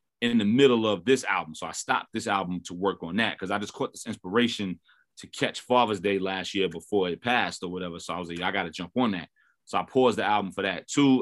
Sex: male